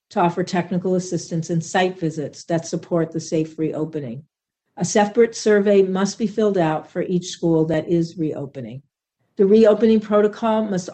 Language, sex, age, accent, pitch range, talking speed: English, female, 50-69, American, 165-195 Hz, 160 wpm